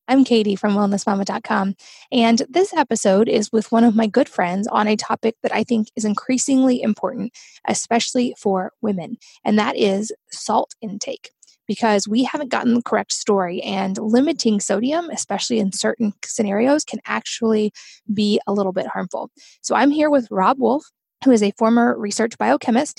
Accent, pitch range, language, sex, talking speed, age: American, 205-245 Hz, English, female, 165 wpm, 20-39